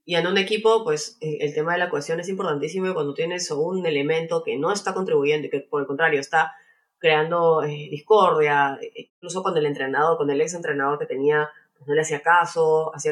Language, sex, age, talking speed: English, female, 20-39, 200 wpm